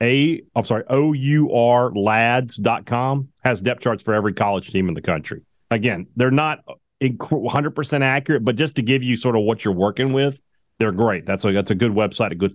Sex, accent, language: male, American, English